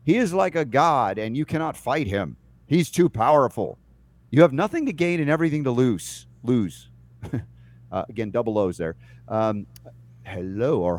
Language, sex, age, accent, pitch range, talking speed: English, male, 50-69, American, 110-140 Hz, 170 wpm